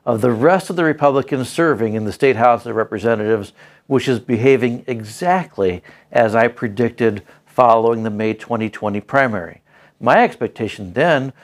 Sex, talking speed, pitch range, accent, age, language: male, 145 wpm, 120-155 Hz, American, 60-79, English